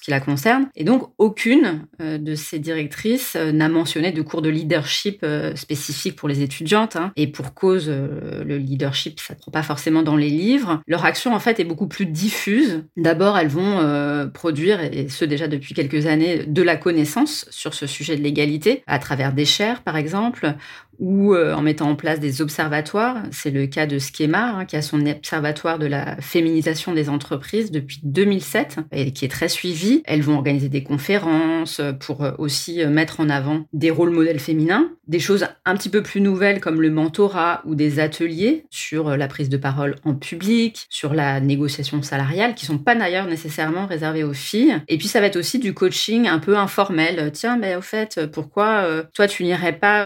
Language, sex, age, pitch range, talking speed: French, female, 30-49, 150-195 Hz, 200 wpm